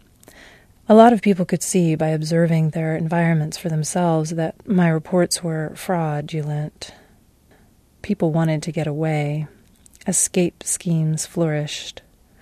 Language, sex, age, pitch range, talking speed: English, female, 30-49, 155-175 Hz, 120 wpm